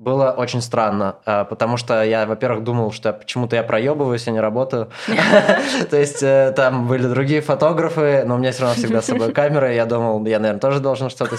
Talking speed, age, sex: 195 wpm, 20-39, male